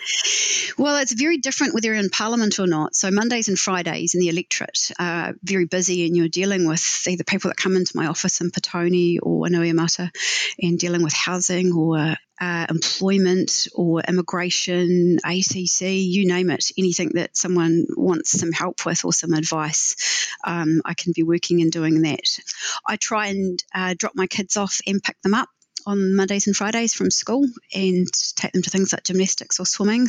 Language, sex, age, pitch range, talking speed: English, female, 40-59, 175-195 Hz, 185 wpm